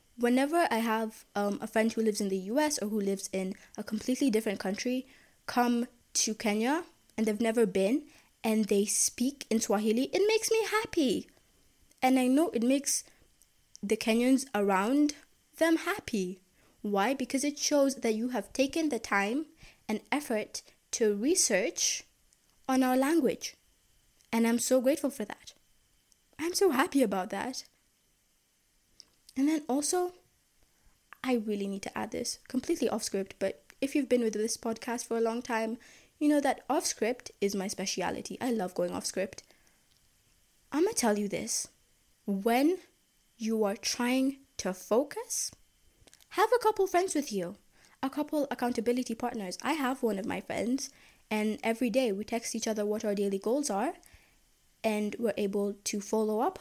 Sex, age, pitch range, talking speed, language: female, 20-39, 215-275 Hz, 165 wpm, English